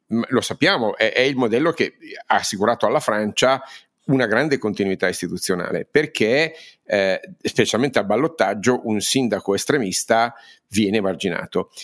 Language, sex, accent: Italian, male, native